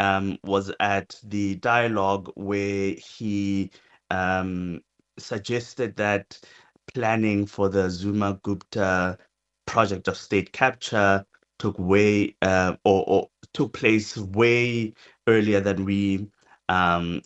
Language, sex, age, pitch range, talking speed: English, male, 30-49, 90-100 Hz, 110 wpm